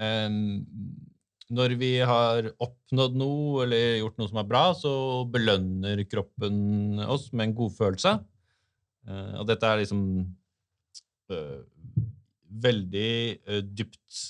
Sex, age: male, 30-49